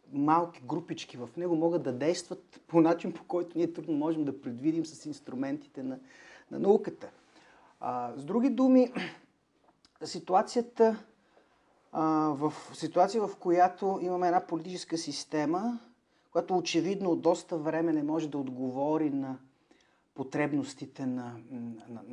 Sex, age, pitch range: male, 40-59, 140-185 Hz